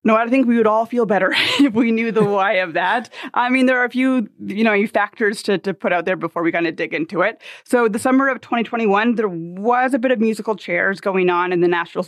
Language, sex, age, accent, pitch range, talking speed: English, female, 20-39, American, 180-225 Hz, 265 wpm